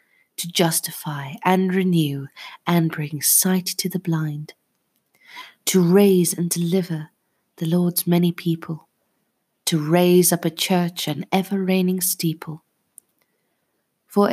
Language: English